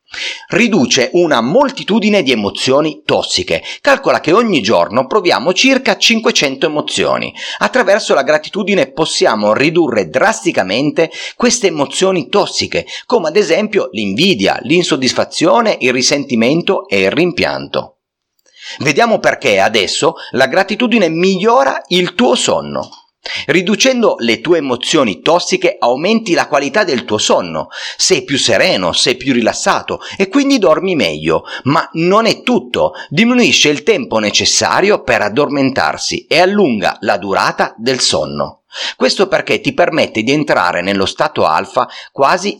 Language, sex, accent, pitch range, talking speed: Italian, male, native, 135-215 Hz, 125 wpm